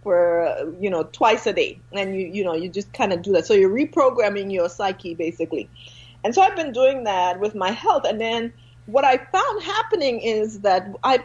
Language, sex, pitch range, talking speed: English, female, 170-240 Hz, 215 wpm